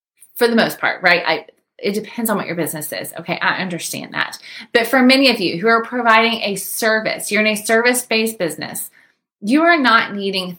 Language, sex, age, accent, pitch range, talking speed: English, female, 30-49, American, 190-235 Hz, 200 wpm